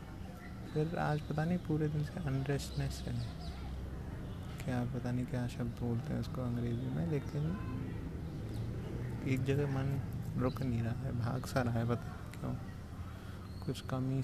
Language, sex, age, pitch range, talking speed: Hindi, male, 20-39, 95-125 Hz, 150 wpm